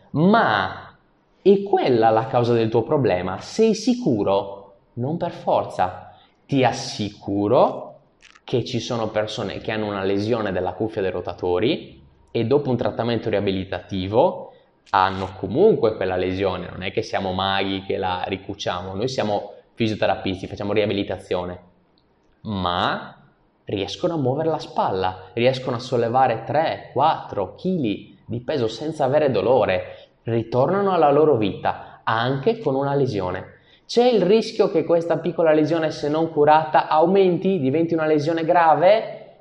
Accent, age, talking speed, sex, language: native, 20-39, 135 wpm, male, Italian